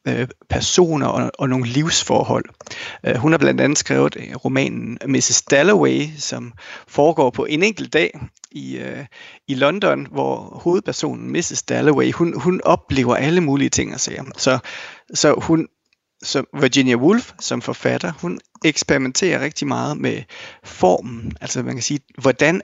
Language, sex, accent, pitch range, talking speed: Danish, male, native, 130-160 Hz, 135 wpm